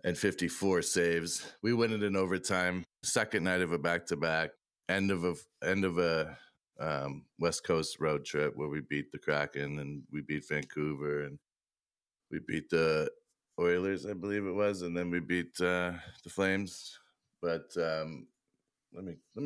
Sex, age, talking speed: male, 30-49, 165 wpm